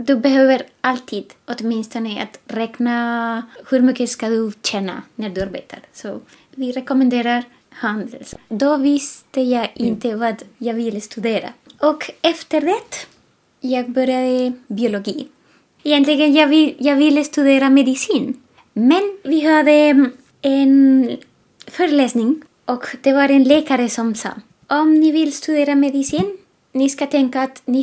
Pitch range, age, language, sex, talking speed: 235-290 Hz, 20-39, Swedish, female, 130 wpm